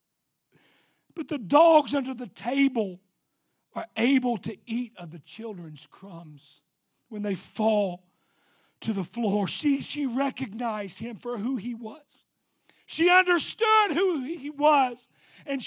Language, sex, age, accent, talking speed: English, male, 40-59, American, 130 wpm